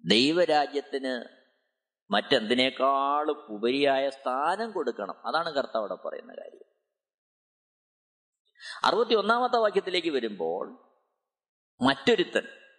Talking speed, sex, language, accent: 65 wpm, male, Malayalam, native